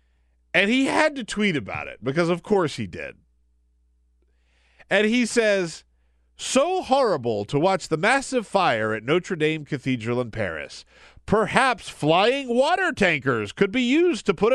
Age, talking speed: 40-59, 155 wpm